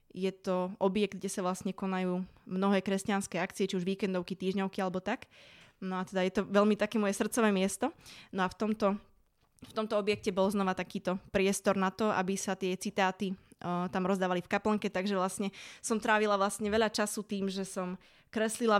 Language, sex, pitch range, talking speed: Slovak, female, 190-215 Hz, 190 wpm